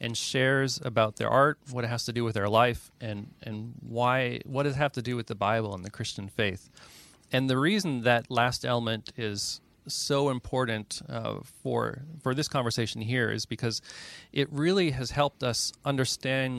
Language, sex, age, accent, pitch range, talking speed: English, male, 30-49, American, 110-135 Hz, 190 wpm